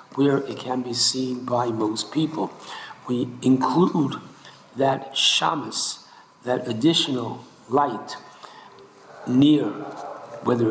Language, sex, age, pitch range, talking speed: English, male, 60-79, 125-150 Hz, 95 wpm